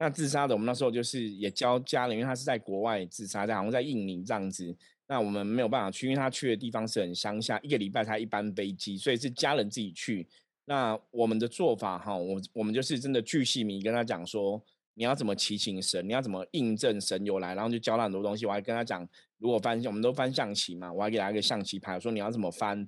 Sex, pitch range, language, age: male, 100-125 Hz, Chinese, 20-39